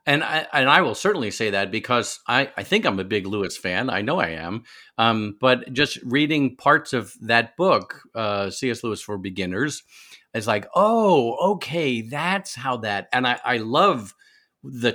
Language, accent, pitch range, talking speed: English, American, 115-155 Hz, 185 wpm